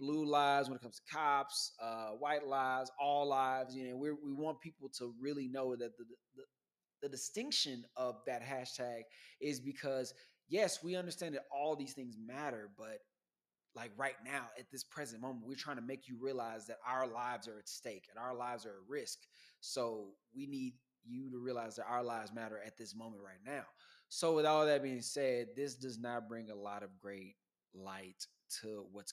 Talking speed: 200 wpm